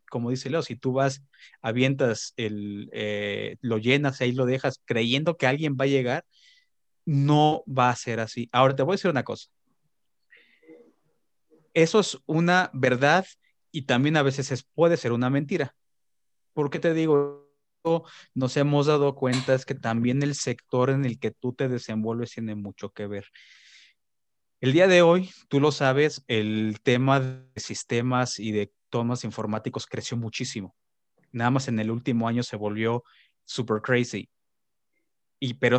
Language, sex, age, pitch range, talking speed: Spanish, male, 30-49, 115-150 Hz, 160 wpm